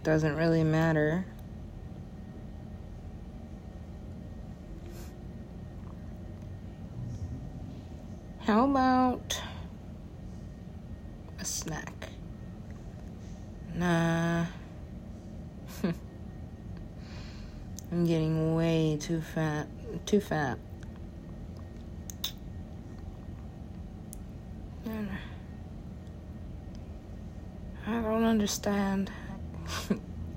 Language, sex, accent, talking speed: English, female, American, 35 wpm